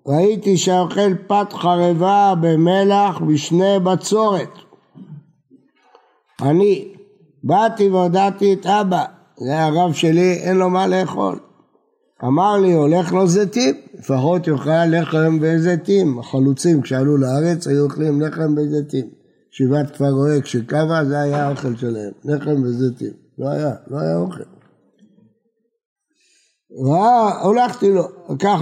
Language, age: Hebrew, 60-79